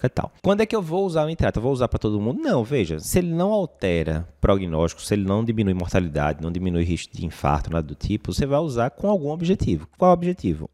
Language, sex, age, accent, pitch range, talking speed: Portuguese, male, 20-39, Brazilian, 90-140 Hz, 240 wpm